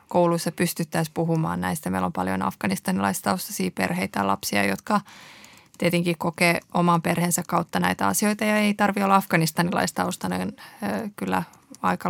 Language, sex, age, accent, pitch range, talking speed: Finnish, female, 20-39, native, 165-185 Hz, 130 wpm